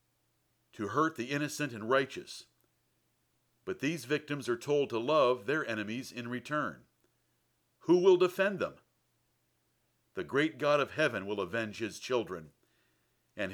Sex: male